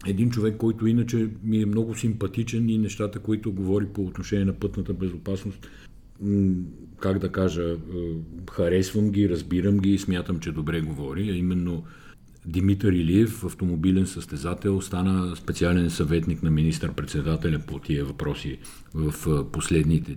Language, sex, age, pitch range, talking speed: Bulgarian, male, 50-69, 90-110 Hz, 130 wpm